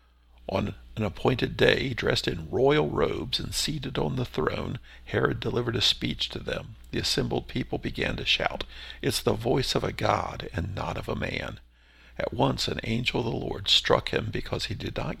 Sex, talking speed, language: male, 195 wpm, English